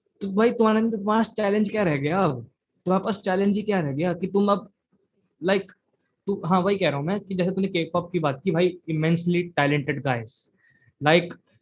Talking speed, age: 210 wpm, 20-39